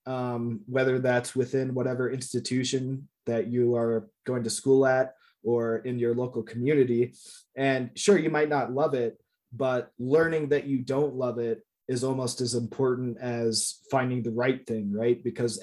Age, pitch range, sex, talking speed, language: 20-39, 120-135 Hz, male, 165 wpm, English